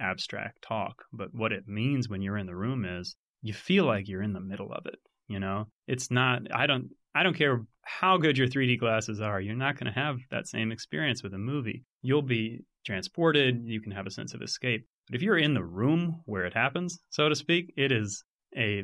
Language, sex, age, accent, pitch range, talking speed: English, male, 30-49, American, 105-140 Hz, 230 wpm